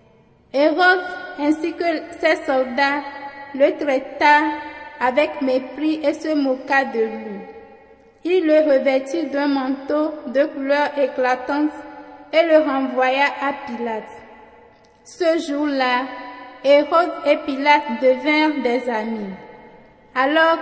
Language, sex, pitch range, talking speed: French, female, 265-315 Hz, 105 wpm